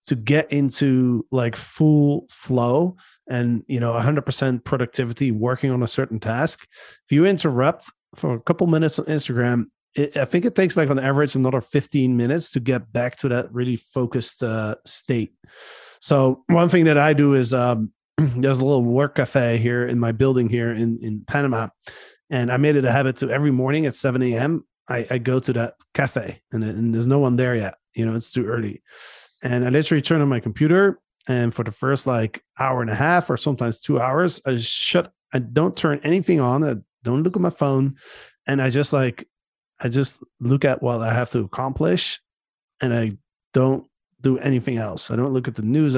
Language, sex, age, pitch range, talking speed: English, male, 30-49, 120-145 Hz, 200 wpm